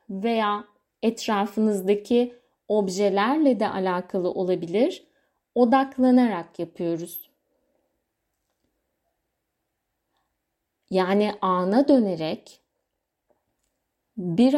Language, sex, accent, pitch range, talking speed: Turkish, female, native, 190-255 Hz, 50 wpm